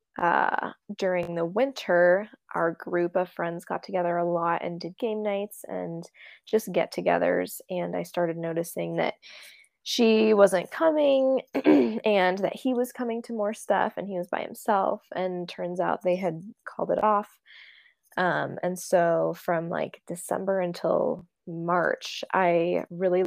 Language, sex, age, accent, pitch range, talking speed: English, female, 10-29, American, 175-210 Hz, 150 wpm